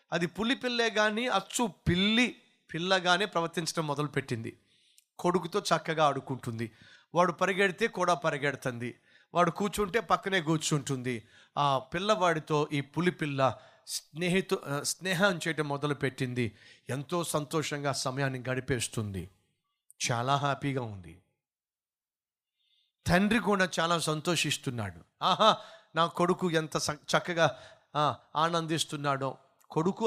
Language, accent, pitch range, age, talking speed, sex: Telugu, native, 140-185 Hz, 30-49, 90 wpm, male